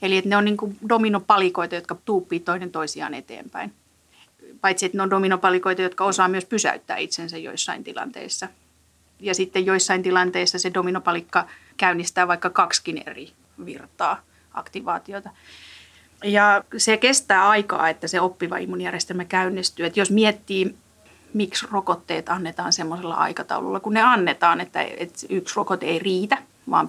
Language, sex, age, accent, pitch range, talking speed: Finnish, female, 30-49, native, 180-205 Hz, 135 wpm